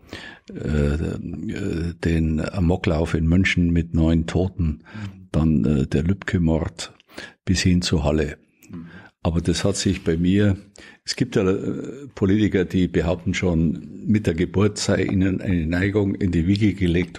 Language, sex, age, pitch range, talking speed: German, male, 60-79, 85-100 Hz, 135 wpm